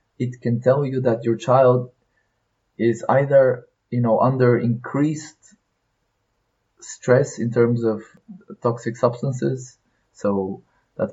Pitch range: 115-130 Hz